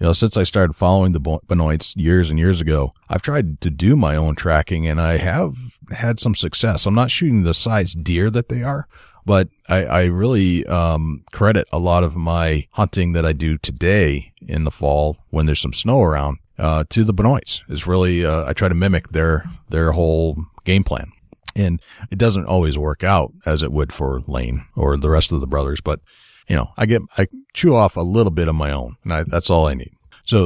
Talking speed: 220 wpm